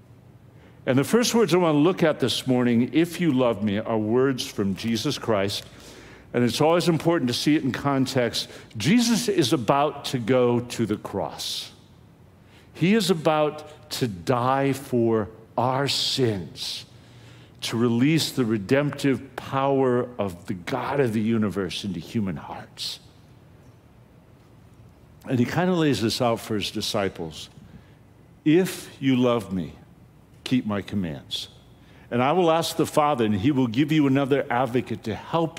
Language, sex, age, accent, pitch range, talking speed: English, male, 60-79, American, 115-145 Hz, 155 wpm